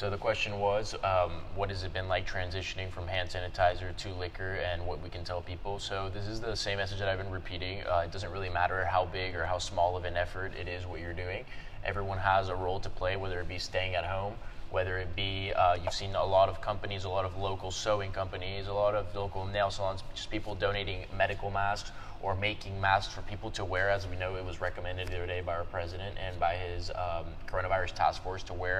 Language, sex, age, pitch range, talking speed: English, male, 20-39, 90-100 Hz, 245 wpm